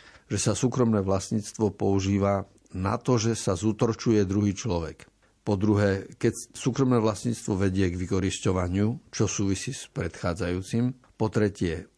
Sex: male